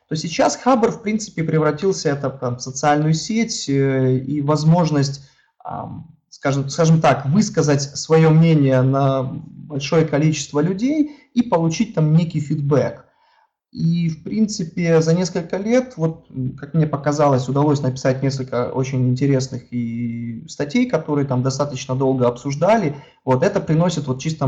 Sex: male